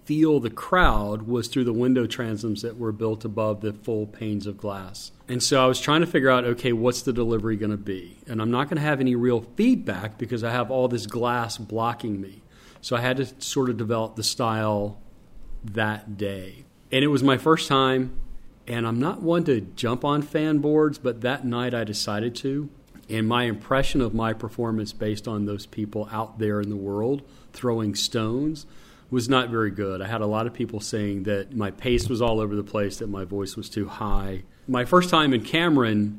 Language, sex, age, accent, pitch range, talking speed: English, male, 40-59, American, 105-125 Hz, 210 wpm